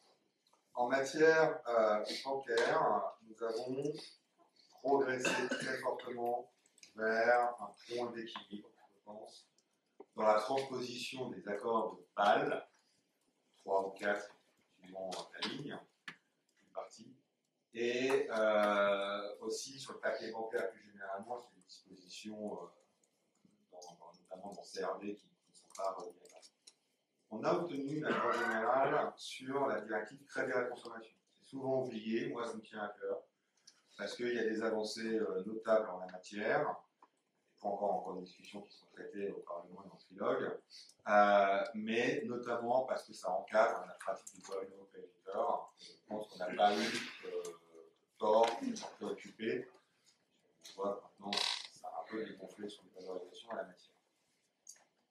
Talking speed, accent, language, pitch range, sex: 155 wpm, French, French, 105-130 Hz, male